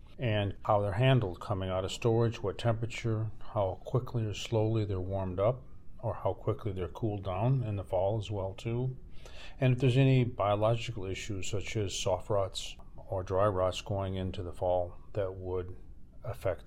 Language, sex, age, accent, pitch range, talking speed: English, male, 40-59, American, 95-120 Hz, 175 wpm